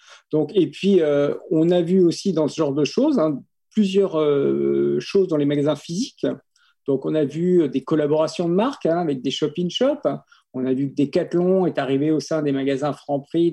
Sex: male